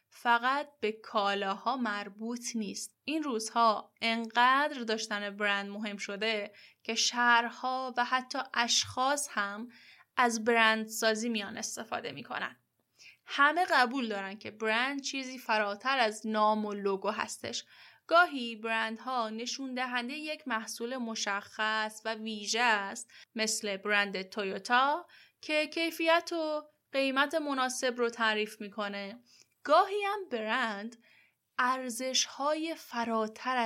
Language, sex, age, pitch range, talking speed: Persian, female, 10-29, 210-255 Hz, 110 wpm